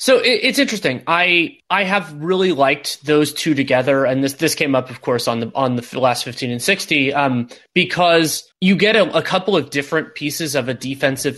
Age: 20-39